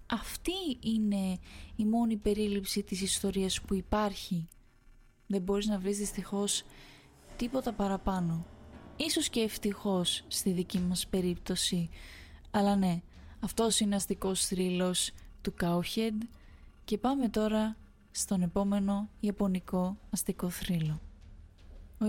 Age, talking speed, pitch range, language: 20-39, 110 wpm, 190-230 Hz, Greek